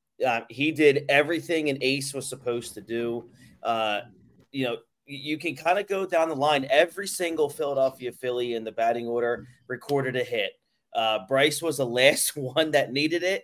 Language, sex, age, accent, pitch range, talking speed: English, male, 30-49, American, 115-140 Hz, 185 wpm